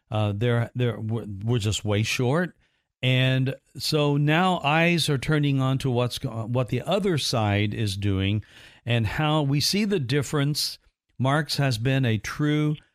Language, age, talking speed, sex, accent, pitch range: English, 50-69, 155 wpm, male, American, 115-145 Hz